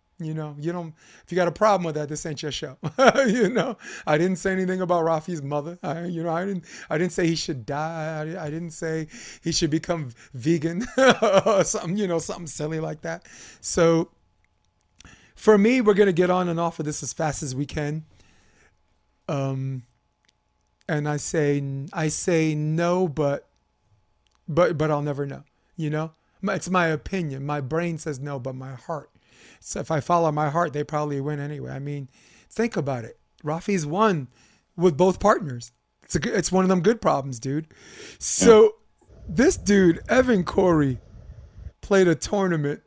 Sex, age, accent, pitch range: male, 30-49, American, 145-185 Hz